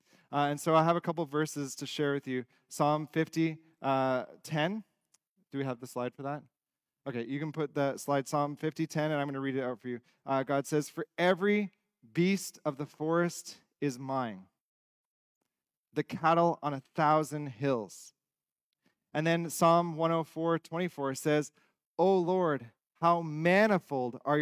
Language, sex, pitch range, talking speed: English, male, 140-165 Hz, 160 wpm